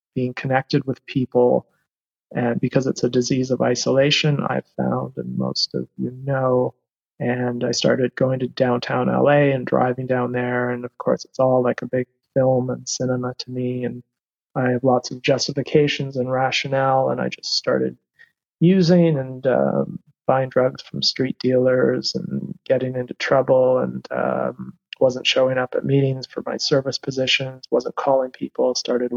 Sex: male